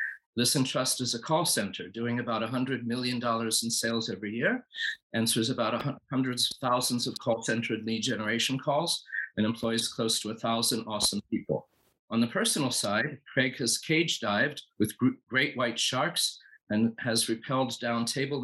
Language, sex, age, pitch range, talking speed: English, male, 50-69, 115-130 Hz, 165 wpm